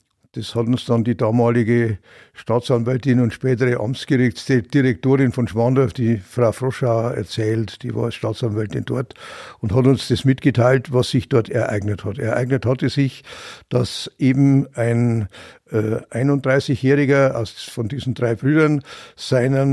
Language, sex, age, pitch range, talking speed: German, male, 60-79, 120-150 Hz, 140 wpm